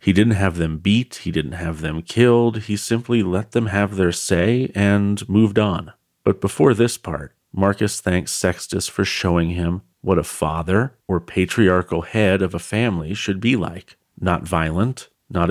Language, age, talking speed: English, 40-59, 175 wpm